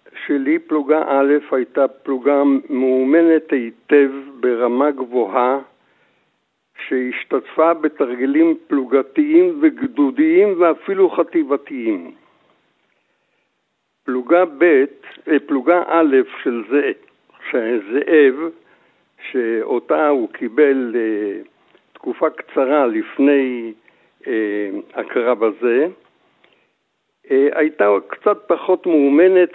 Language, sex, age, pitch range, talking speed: Hebrew, male, 60-79, 130-200 Hz, 65 wpm